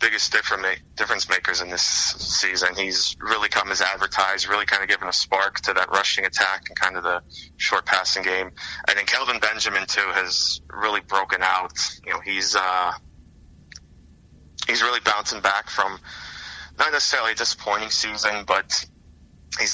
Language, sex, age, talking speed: English, male, 20-39, 160 wpm